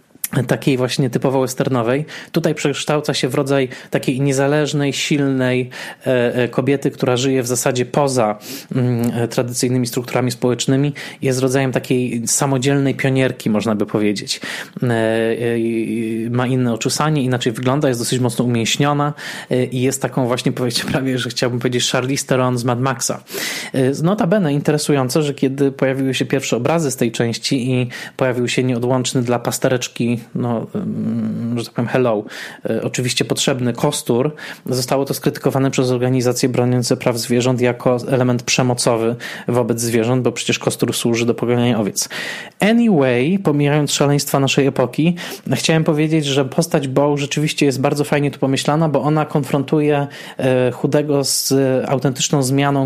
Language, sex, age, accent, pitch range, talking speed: Polish, male, 20-39, native, 125-145 Hz, 135 wpm